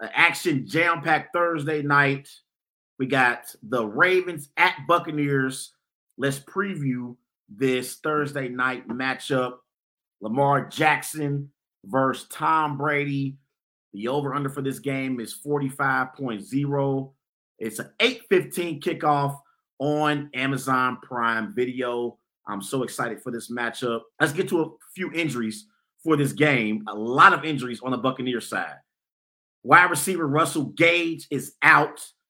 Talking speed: 120 wpm